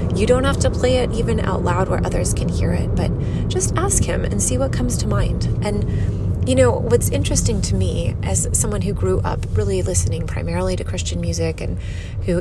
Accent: American